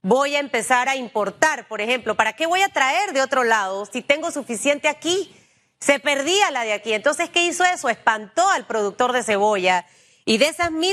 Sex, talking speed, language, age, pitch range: female, 200 wpm, Spanish, 30-49, 225-290 Hz